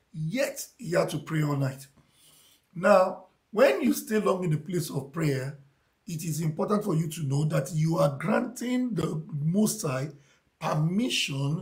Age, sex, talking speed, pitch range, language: 50-69, male, 165 wpm, 145-190 Hz, English